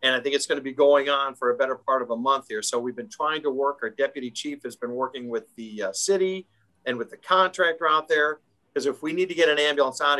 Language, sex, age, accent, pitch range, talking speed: English, male, 50-69, American, 130-170 Hz, 280 wpm